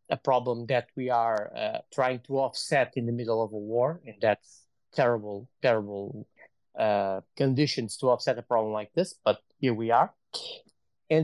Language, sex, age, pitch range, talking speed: English, male, 20-39, 115-130 Hz, 170 wpm